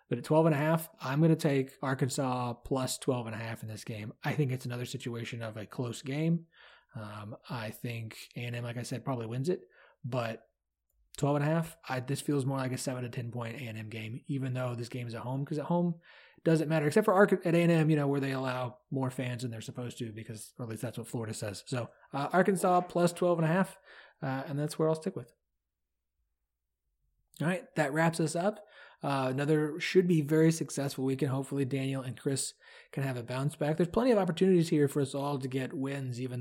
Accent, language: American, English